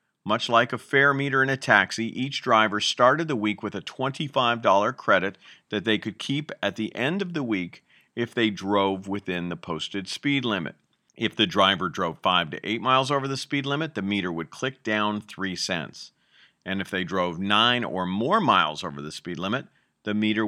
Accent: American